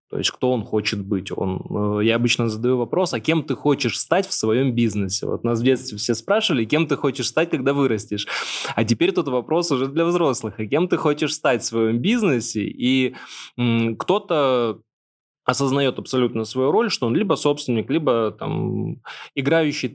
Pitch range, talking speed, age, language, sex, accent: 115-140 Hz, 180 wpm, 20-39, Russian, male, native